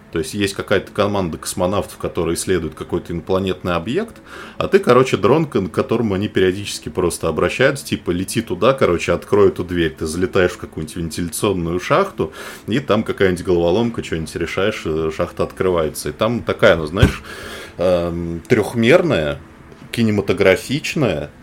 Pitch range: 90-110 Hz